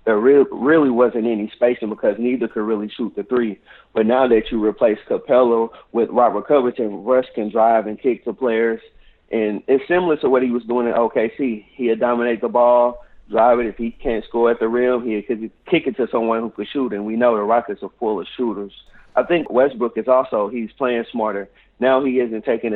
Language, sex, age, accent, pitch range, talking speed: English, male, 30-49, American, 105-125 Hz, 215 wpm